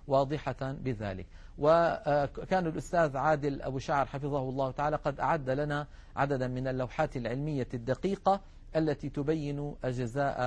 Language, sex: Arabic, male